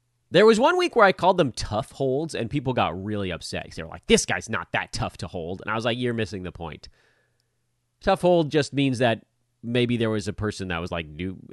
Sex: male